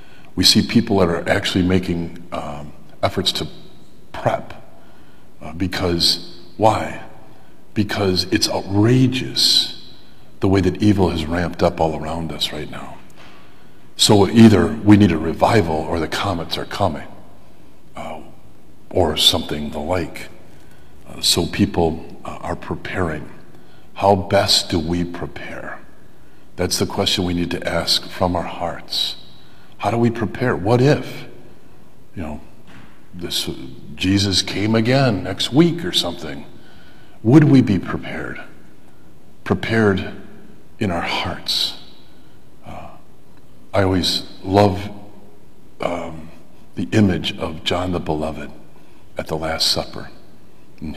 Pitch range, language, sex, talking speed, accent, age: 85-105 Hz, English, male, 125 wpm, American, 50-69